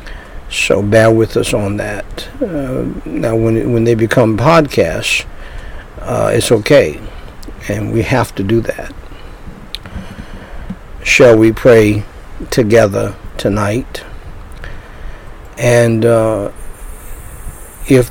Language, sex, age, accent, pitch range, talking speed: English, male, 50-69, American, 100-120 Hz, 100 wpm